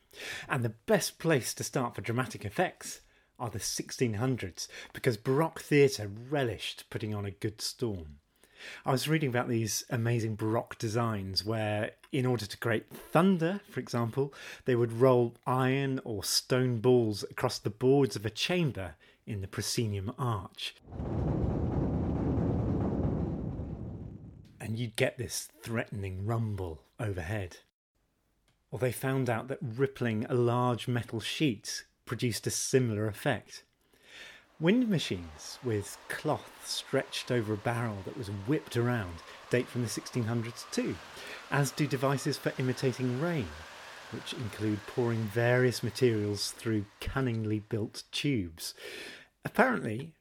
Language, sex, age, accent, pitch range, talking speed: English, male, 30-49, British, 105-130 Hz, 130 wpm